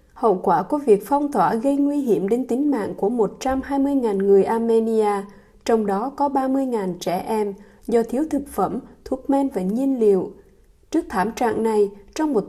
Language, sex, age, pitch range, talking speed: Vietnamese, female, 20-39, 205-270 Hz, 180 wpm